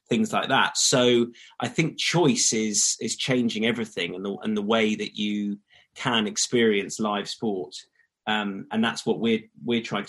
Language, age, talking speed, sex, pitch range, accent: English, 30-49, 165 wpm, male, 105-135 Hz, British